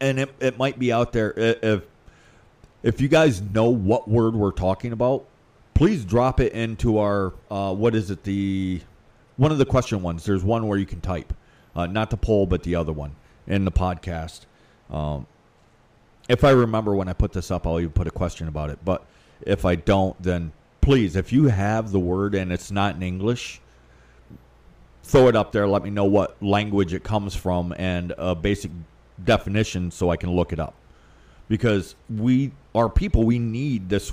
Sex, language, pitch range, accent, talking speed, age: male, English, 90-115 Hz, American, 195 wpm, 40-59